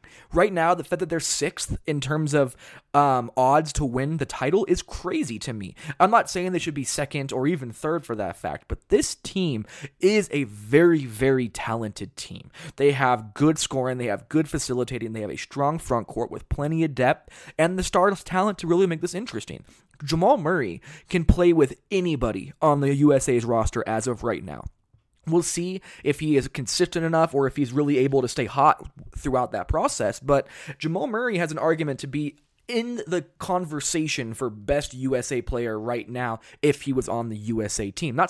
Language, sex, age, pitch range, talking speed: English, male, 20-39, 130-165 Hz, 195 wpm